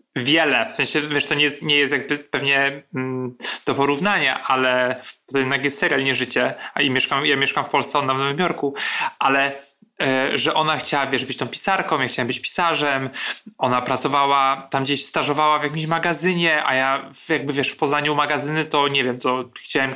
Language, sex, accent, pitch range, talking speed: Polish, male, native, 135-155 Hz, 200 wpm